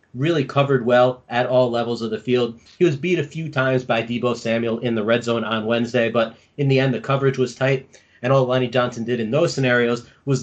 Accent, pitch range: American, 120-140 Hz